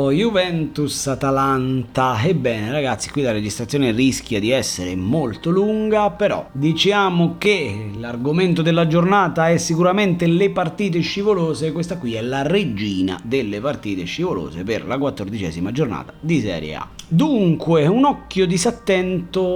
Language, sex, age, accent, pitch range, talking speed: Italian, male, 30-49, native, 105-165 Hz, 130 wpm